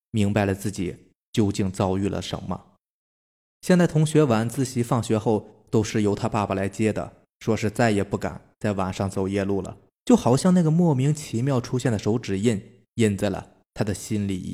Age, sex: 20-39, male